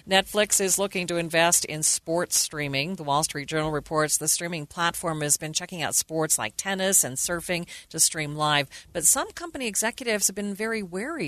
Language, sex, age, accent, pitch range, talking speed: English, female, 40-59, American, 150-185 Hz, 190 wpm